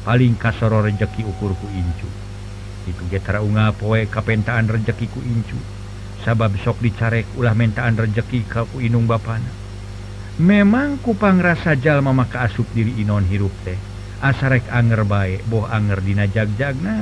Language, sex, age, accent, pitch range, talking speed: Indonesian, male, 50-69, native, 100-120 Hz, 145 wpm